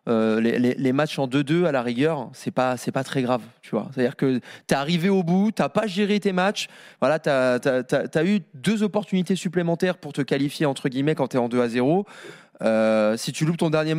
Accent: French